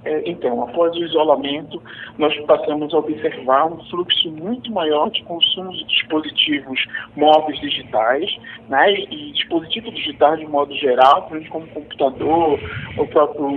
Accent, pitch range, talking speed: Brazilian, 155-225 Hz, 130 wpm